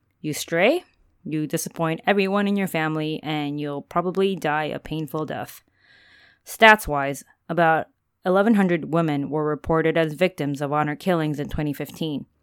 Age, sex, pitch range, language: 20-39, female, 150-180 Hz, English